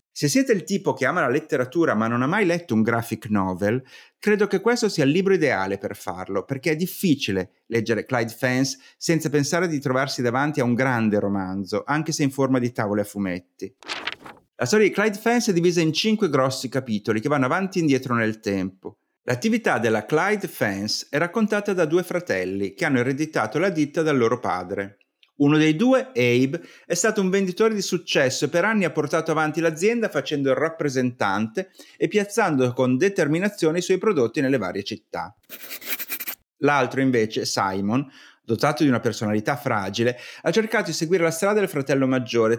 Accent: native